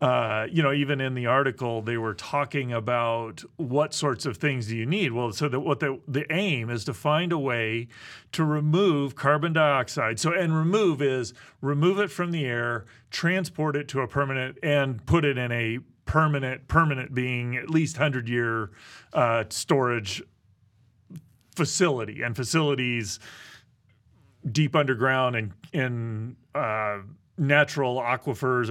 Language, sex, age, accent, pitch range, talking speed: English, male, 40-59, American, 120-150 Hz, 150 wpm